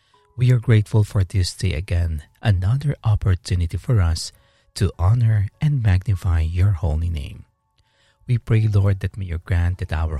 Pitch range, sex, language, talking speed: 90-110 Hz, male, English, 160 wpm